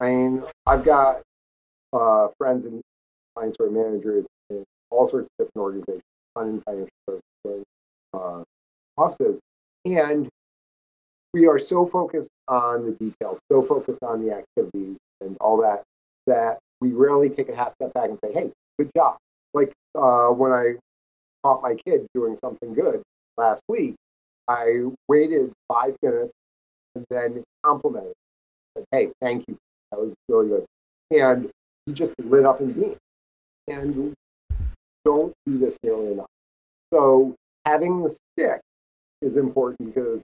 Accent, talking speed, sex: American, 140 wpm, male